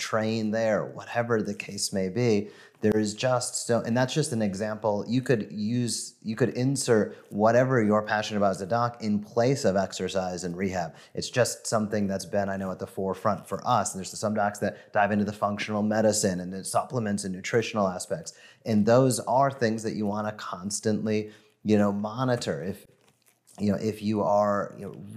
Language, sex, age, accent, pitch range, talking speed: English, male, 30-49, American, 100-120 Hz, 200 wpm